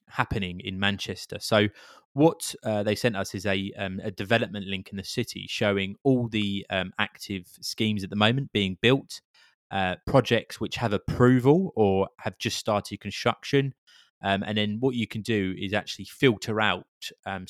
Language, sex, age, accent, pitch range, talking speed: English, male, 20-39, British, 95-115 Hz, 175 wpm